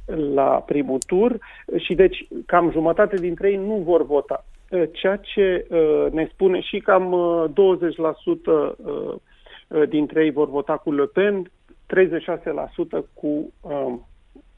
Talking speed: 115 wpm